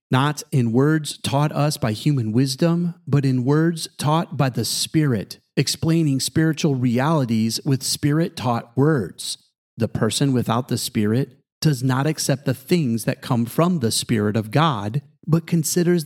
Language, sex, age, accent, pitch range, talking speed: English, male, 40-59, American, 115-150 Hz, 150 wpm